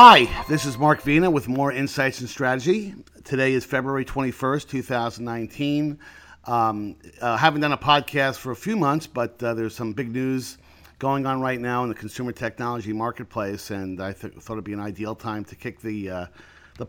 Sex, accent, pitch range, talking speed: male, American, 110-130 Hz, 205 wpm